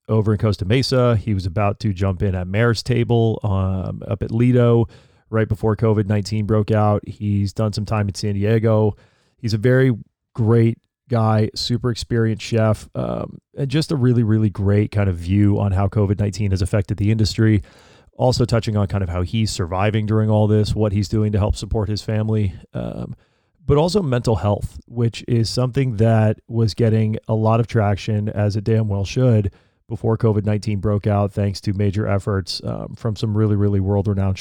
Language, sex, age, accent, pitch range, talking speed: English, male, 30-49, American, 100-115 Hz, 185 wpm